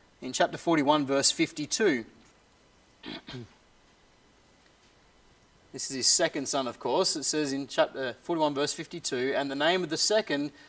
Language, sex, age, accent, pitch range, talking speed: English, male, 30-49, Australian, 145-220 Hz, 140 wpm